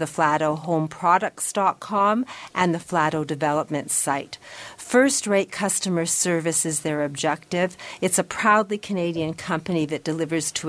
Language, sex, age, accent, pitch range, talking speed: English, female, 50-69, American, 155-190 Hz, 125 wpm